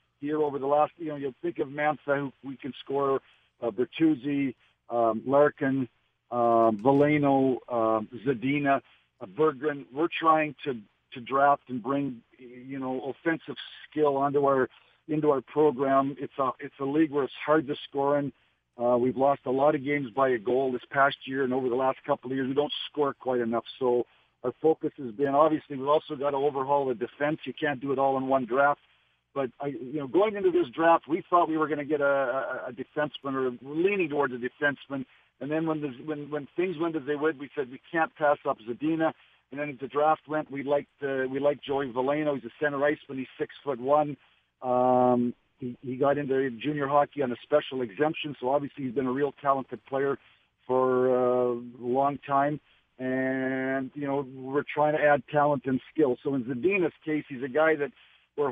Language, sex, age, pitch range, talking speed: English, male, 50-69, 130-150 Hz, 205 wpm